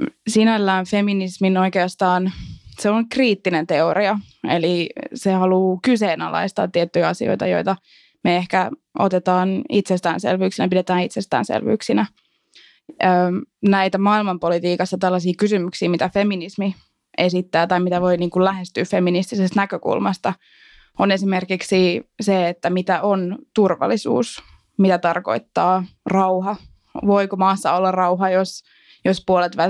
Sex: female